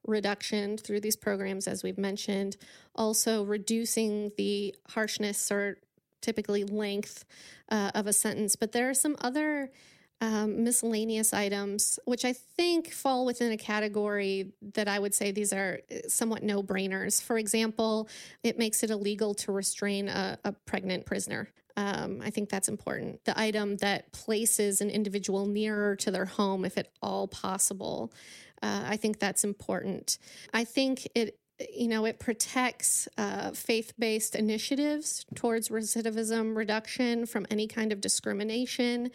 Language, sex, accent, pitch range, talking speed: English, female, American, 200-225 Hz, 145 wpm